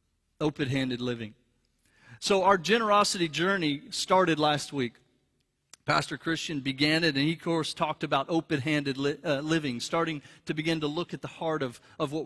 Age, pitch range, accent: 40-59, 135-160 Hz, American